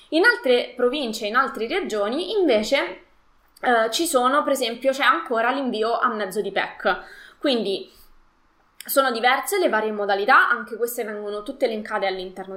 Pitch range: 210-265 Hz